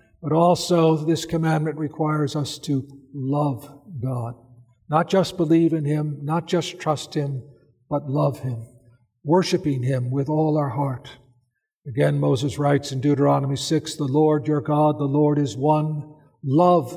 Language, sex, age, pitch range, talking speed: English, male, 60-79, 140-170 Hz, 150 wpm